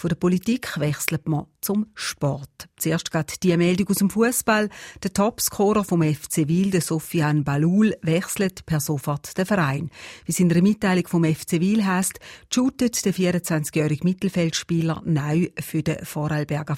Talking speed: 155 wpm